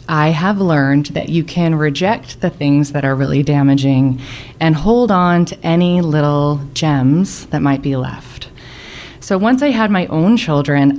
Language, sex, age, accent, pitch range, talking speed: English, female, 20-39, American, 150-250 Hz, 170 wpm